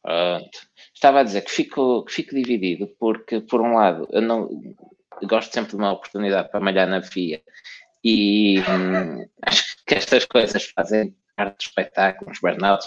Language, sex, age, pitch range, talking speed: Portuguese, male, 20-39, 95-125 Hz, 170 wpm